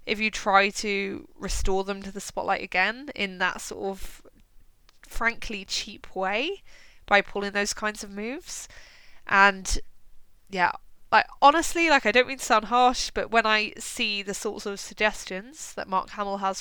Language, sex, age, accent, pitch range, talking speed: English, female, 20-39, British, 185-215 Hz, 165 wpm